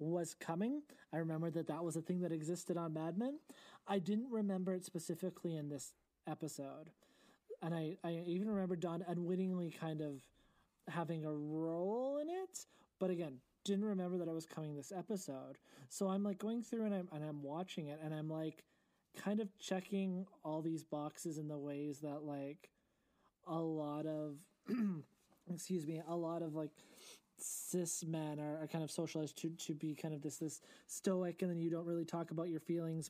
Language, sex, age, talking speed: English, male, 20-39, 190 wpm